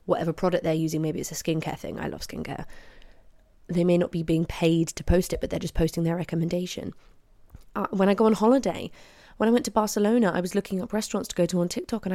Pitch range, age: 170-200 Hz, 20-39